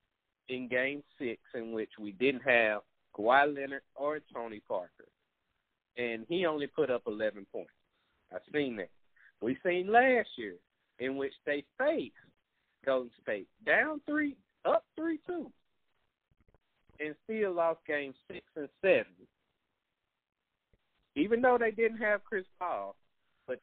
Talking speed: 130 wpm